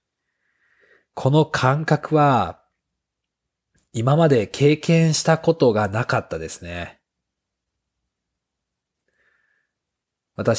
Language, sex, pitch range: Japanese, male, 95-135 Hz